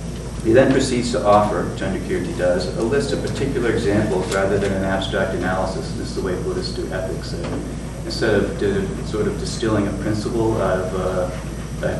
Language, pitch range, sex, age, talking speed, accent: English, 100-125 Hz, male, 40-59, 185 wpm, American